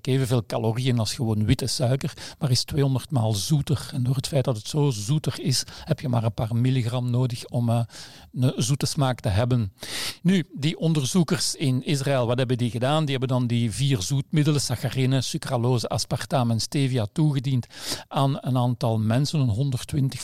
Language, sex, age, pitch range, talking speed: Dutch, male, 50-69, 120-140 Hz, 175 wpm